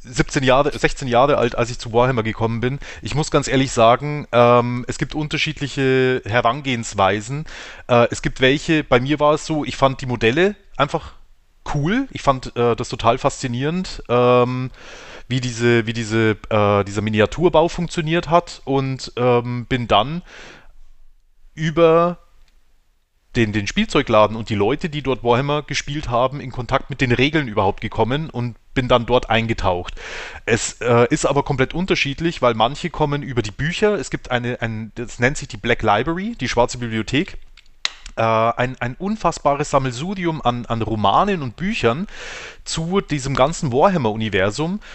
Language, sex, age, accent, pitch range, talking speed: German, male, 30-49, German, 115-150 Hz, 155 wpm